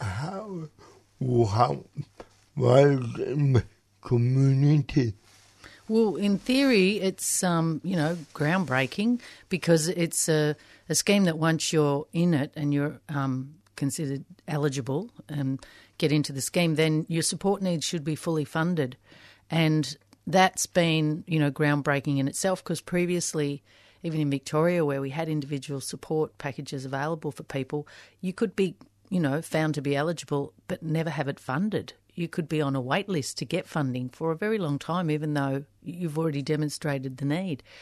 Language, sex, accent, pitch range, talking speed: English, female, Australian, 140-170 Hz, 150 wpm